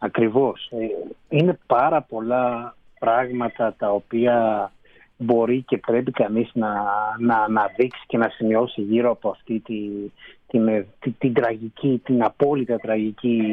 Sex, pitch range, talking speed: male, 115-145 Hz, 115 wpm